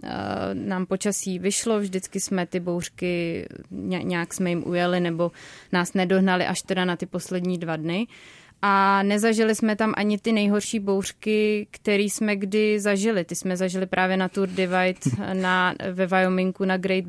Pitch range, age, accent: 185-205 Hz, 20-39, native